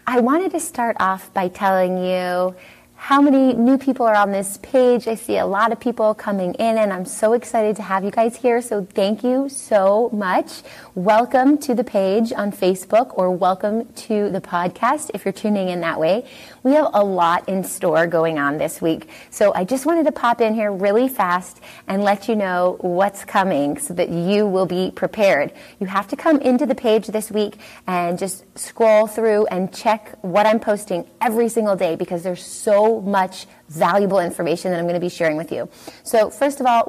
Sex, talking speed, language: female, 205 wpm, English